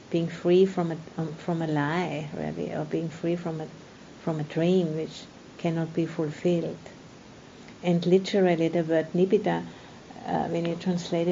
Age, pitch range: 50-69, 155-175 Hz